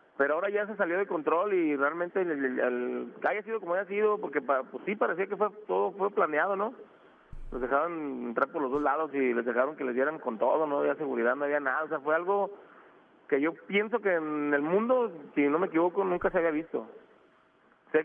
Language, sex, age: Spanish, male, 30-49